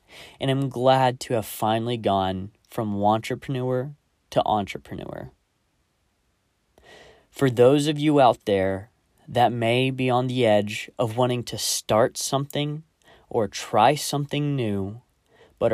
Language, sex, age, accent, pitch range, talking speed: English, male, 20-39, American, 100-130 Hz, 125 wpm